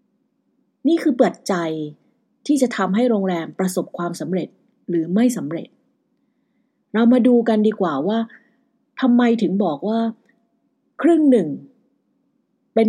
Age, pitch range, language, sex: 30-49, 190-260 Hz, English, female